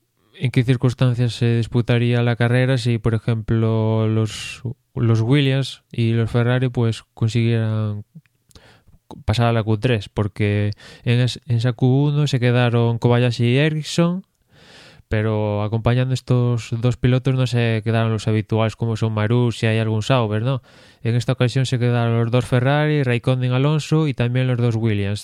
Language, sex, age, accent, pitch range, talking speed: Spanish, male, 20-39, Spanish, 110-130 Hz, 155 wpm